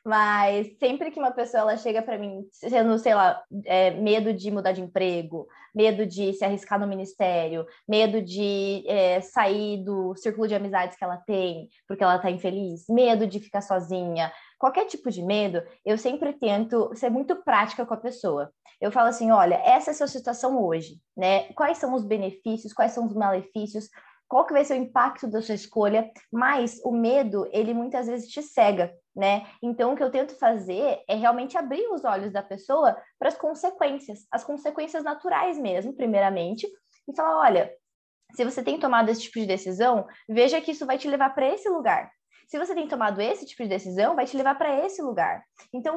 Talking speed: 190 wpm